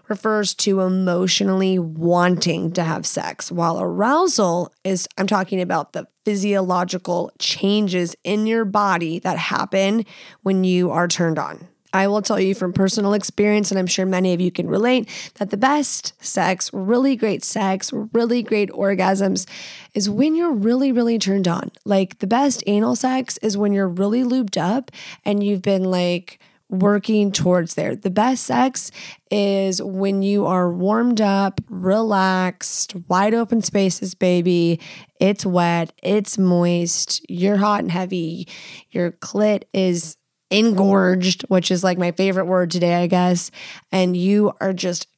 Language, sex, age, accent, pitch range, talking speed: English, female, 20-39, American, 180-210 Hz, 155 wpm